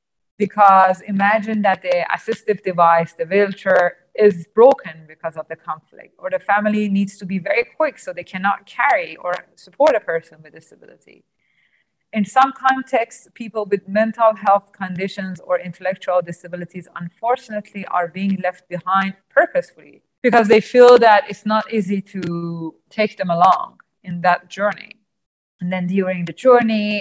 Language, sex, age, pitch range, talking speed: English, female, 30-49, 175-215 Hz, 150 wpm